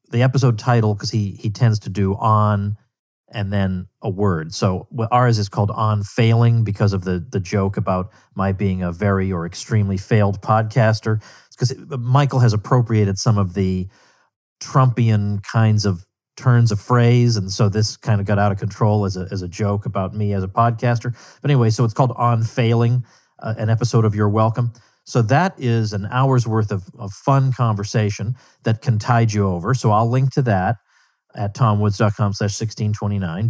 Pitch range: 100-120 Hz